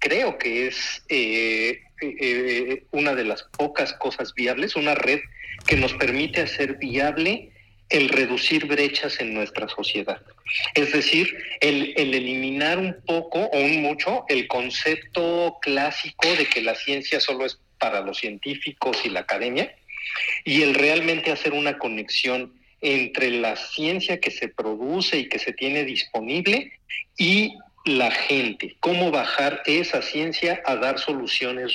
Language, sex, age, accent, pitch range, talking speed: Spanish, male, 50-69, Mexican, 125-155 Hz, 145 wpm